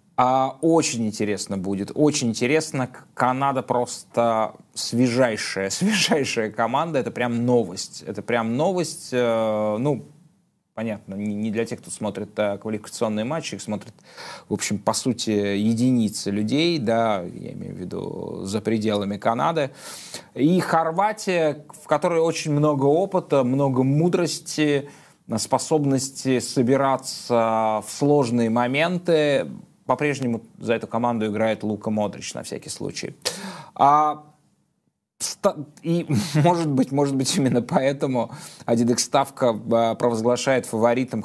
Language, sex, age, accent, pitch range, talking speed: Russian, male, 20-39, native, 115-150 Hz, 110 wpm